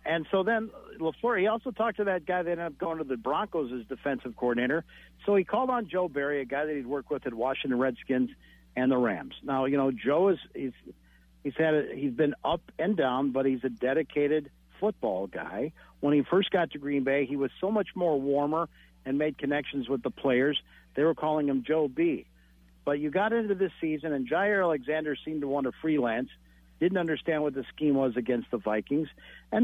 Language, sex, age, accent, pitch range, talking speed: English, male, 50-69, American, 125-165 Hz, 215 wpm